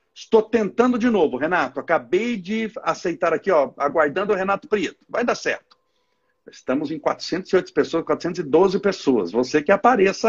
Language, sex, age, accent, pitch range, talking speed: Portuguese, male, 60-79, Brazilian, 165-270 Hz, 150 wpm